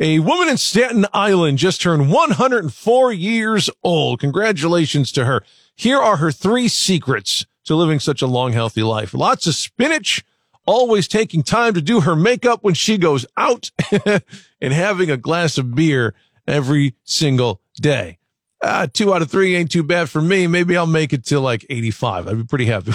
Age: 40-59